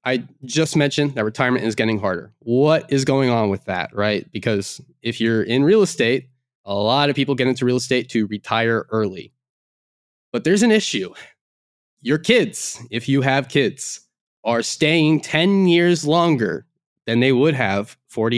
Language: English